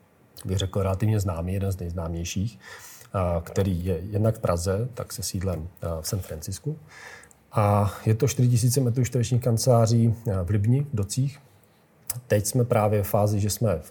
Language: Czech